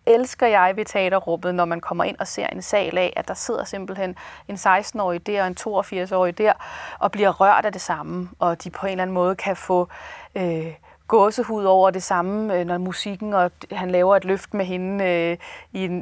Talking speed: 210 wpm